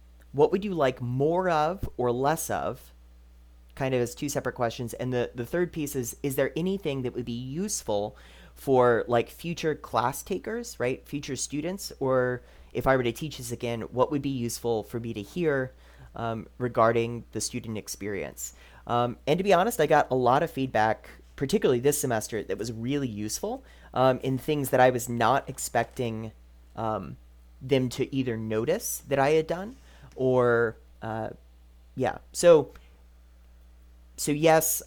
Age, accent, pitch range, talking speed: 30-49, American, 105-135 Hz, 170 wpm